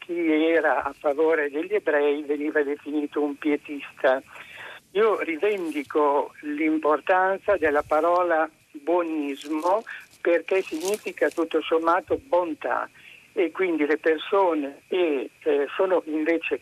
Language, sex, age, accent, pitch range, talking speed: Italian, male, 60-79, native, 150-190 Hz, 105 wpm